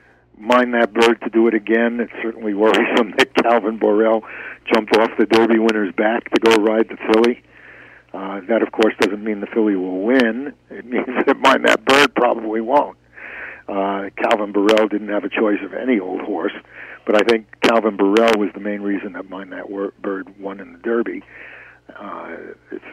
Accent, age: American, 60-79